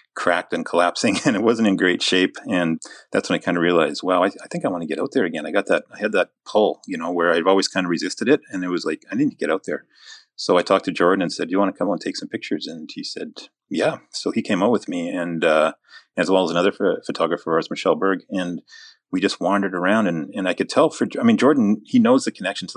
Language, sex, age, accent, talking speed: English, male, 40-59, American, 295 wpm